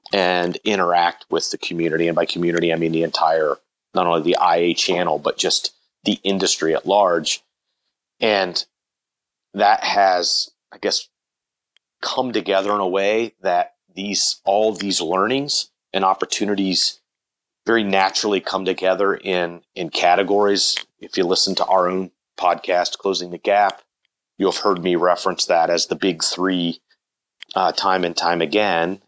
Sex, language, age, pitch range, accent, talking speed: male, English, 30-49, 90-100 Hz, American, 145 wpm